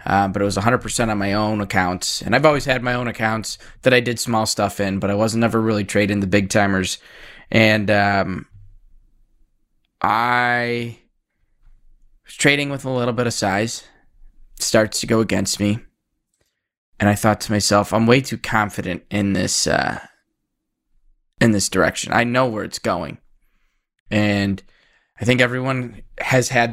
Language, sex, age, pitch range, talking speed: English, male, 20-39, 100-120 Hz, 165 wpm